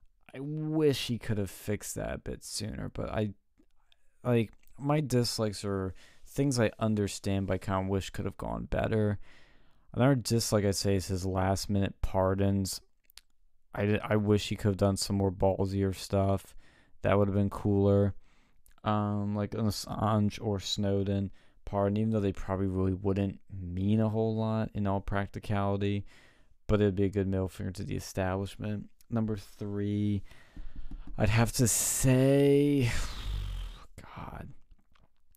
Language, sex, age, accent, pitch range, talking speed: English, male, 20-39, American, 95-110 Hz, 150 wpm